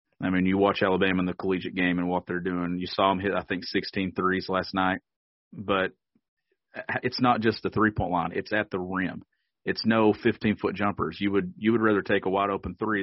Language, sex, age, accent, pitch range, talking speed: English, male, 40-59, American, 95-115 Hz, 215 wpm